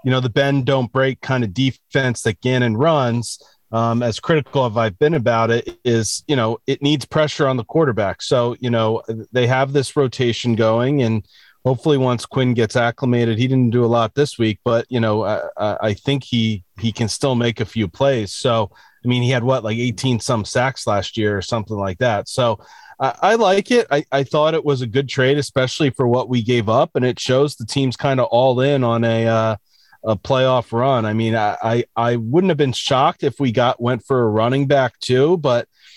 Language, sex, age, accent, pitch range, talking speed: English, male, 30-49, American, 115-135 Hz, 220 wpm